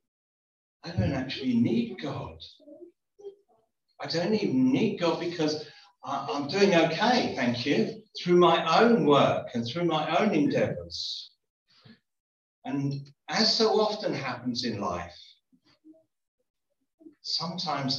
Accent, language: British, English